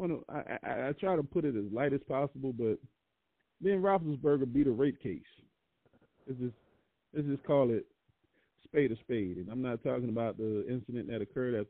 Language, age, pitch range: English, 40-59, 110-130 Hz